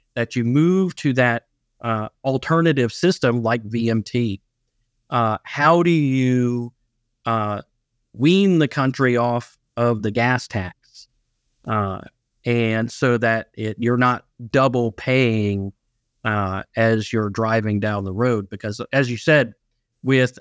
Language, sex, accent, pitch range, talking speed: English, male, American, 110-125 Hz, 130 wpm